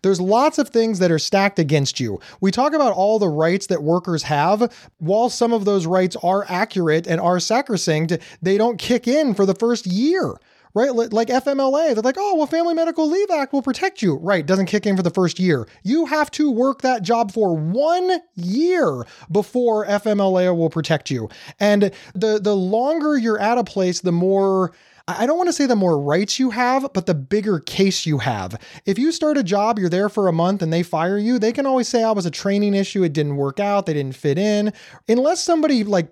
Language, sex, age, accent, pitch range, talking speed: English, male, 30-49, American, 170-240 Hz, 220 wpm